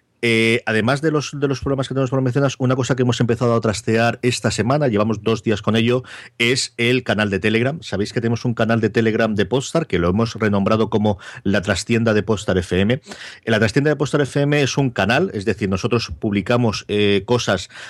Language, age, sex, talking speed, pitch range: Spanish, 40-59, male, 210 wpm, 105-130 Hz